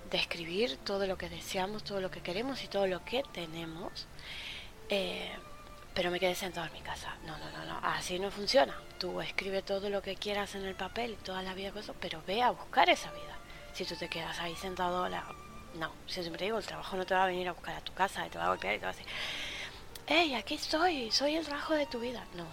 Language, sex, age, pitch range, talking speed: Spanish, female, 20-39, 185-240 Hz, 240 wpm